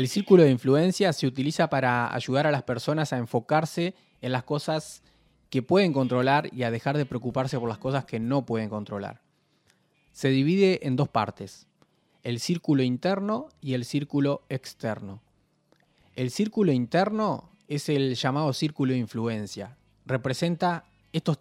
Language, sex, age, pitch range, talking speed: Spanish, male, 20-39, 120-160 Hz, 150 wpm